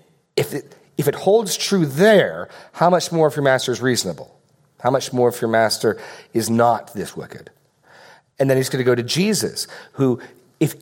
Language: English